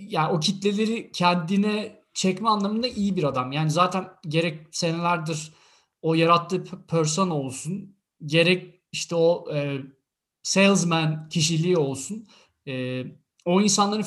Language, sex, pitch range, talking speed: Turkish, male, 155-205 Hz, 115 wpm